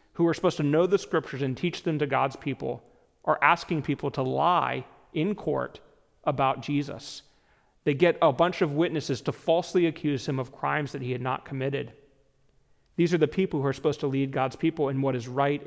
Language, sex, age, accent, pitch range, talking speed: English, male, 40-59, American, 135-170 Hz, 205 wpm